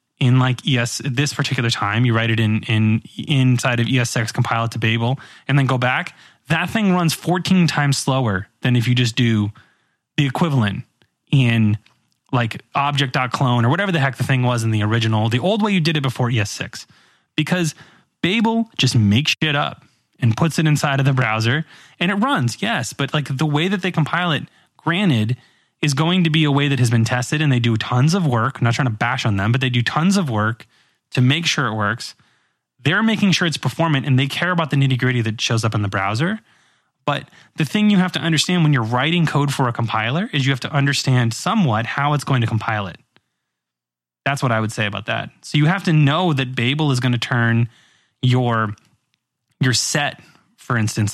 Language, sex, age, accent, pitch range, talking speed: English, male, 20-39, American, 115-155 Hz, 215 wpm